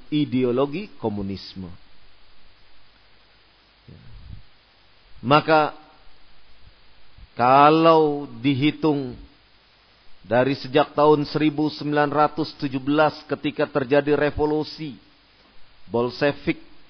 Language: Indonesian